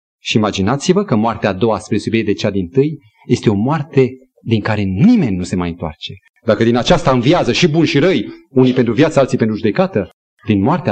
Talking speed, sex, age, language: 210 wpm, male, 40-59, Romanian